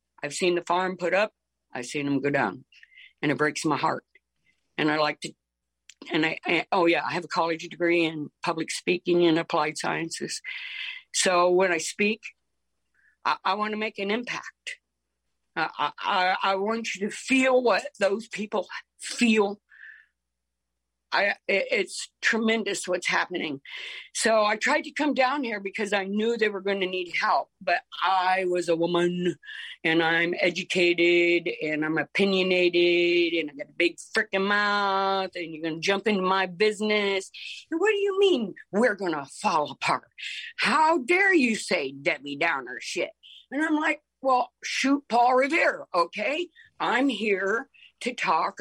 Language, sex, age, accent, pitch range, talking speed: English, female, 50-69, American, 170-235 Hz, 165 wpm